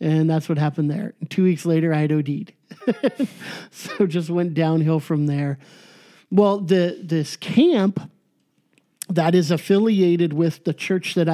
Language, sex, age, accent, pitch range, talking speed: English, male, 50-69, American, 155-185 Hz, 150 wpm